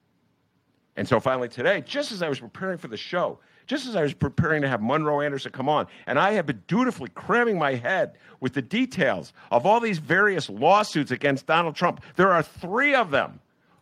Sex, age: male, 50-69